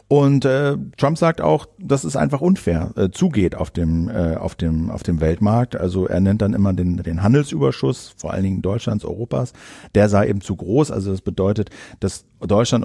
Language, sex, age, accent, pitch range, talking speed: German, male, 50-69, German, 100-125 Hz, 195 wpm